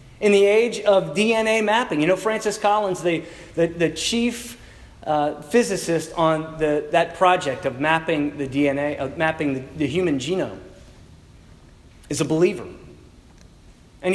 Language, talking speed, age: English, 140 wpm, 40-59